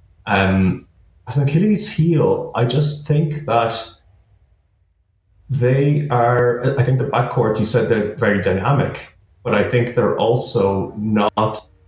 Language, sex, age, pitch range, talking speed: English, male, 30-49, 95-130 Hz, 130 wpm